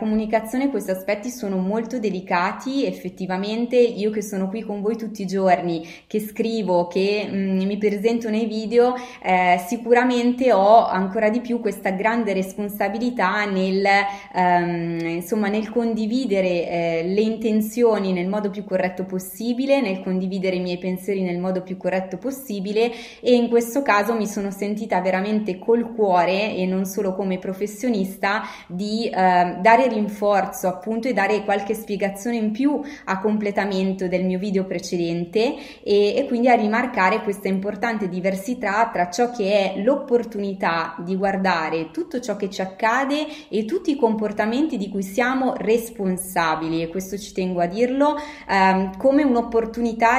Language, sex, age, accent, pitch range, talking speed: Italian, female, 20-39, native, 185-230 Hz, 150 wpm